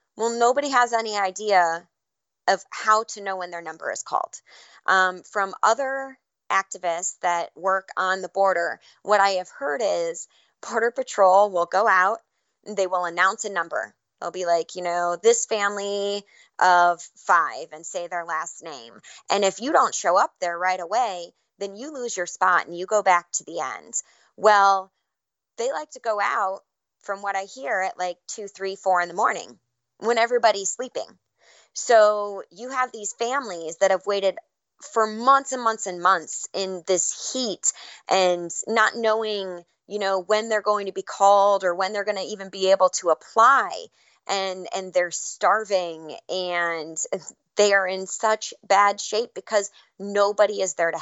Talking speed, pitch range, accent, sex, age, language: 175 wpm, 180-215 Hz, American, female, 20-39, English